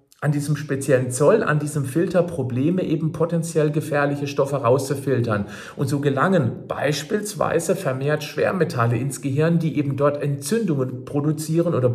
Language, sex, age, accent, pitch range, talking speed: German, male, 50-69, German, 125-170 Hz, 135 wpm